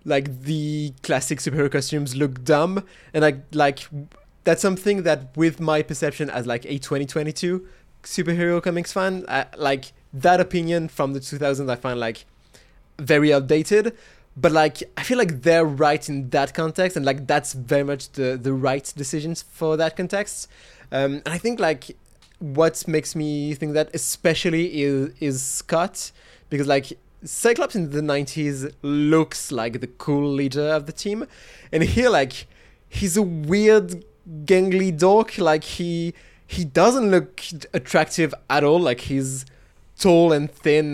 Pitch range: 140-170 Hz